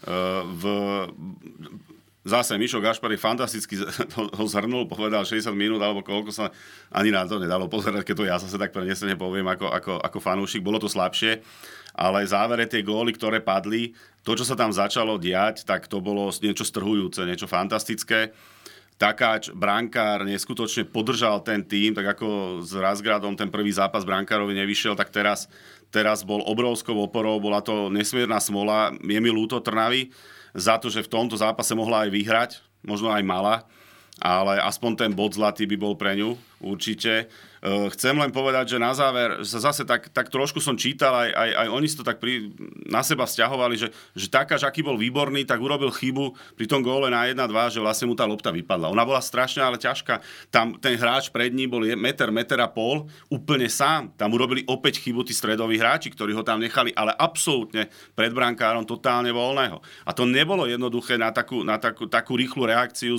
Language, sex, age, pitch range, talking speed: Slovak, male, 40-59, 105-120 Hz, 180 wpm